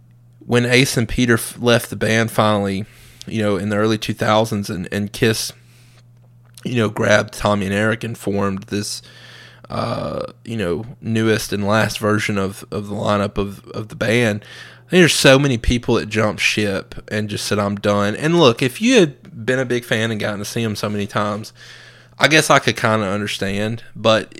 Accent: American